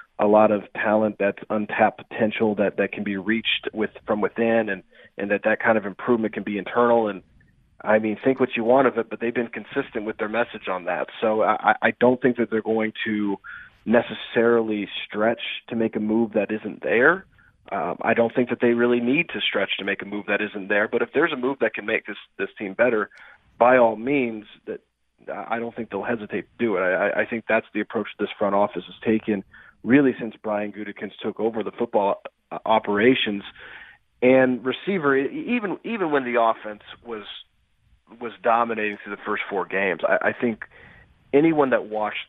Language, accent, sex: English, American, male